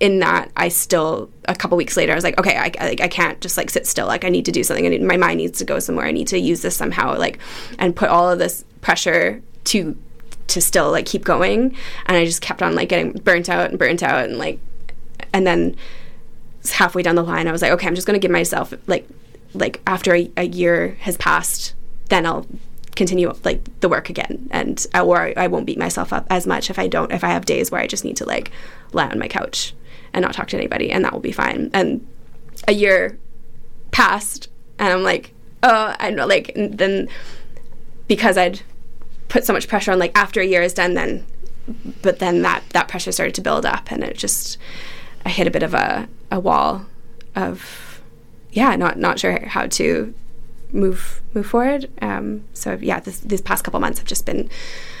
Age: 10-29